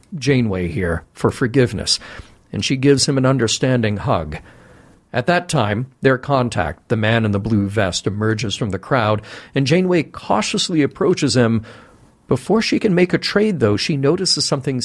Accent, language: American, English